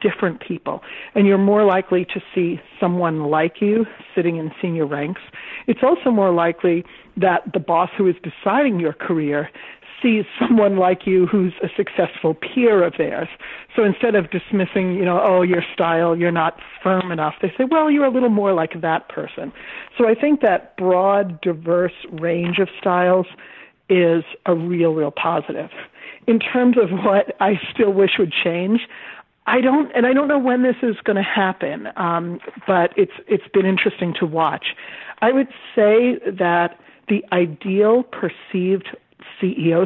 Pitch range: 175-220 Hz